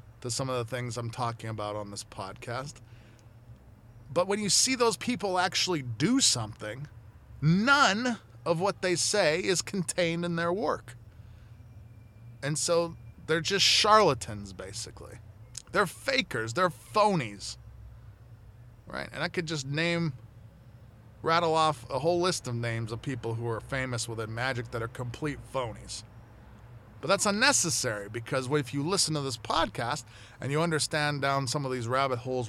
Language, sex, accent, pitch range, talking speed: English, male, American, 115-160 Hz, 155 wpm